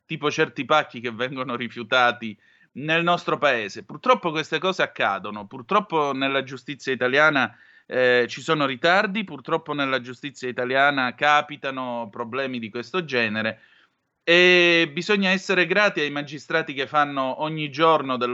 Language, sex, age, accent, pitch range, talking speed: Italian, male, 30-49, native, 120-155 Hz, 135 wpm